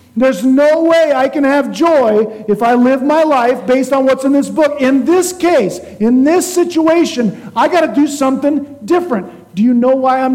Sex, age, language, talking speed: male, 50-69, English, 205 wpm